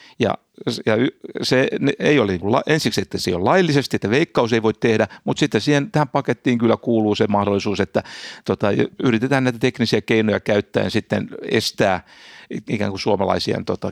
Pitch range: 110-155 Hz